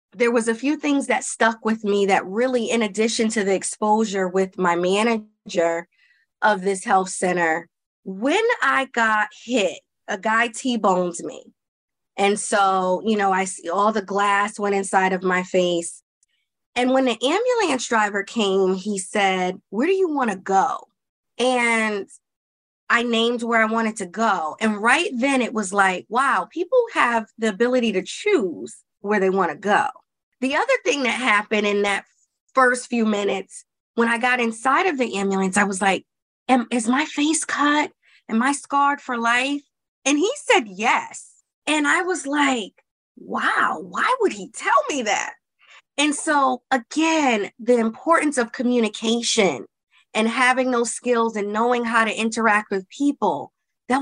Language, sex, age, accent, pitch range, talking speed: English, female, 20-39, American, 200-260 Hz, 165 wpm